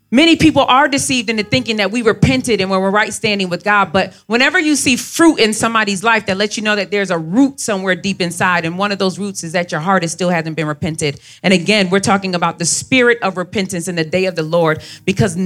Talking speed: 250 wpm